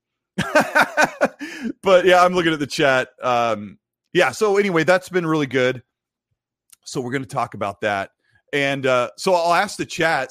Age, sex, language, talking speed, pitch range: 30-49, male, English, 170 wpm, 115-150 Hz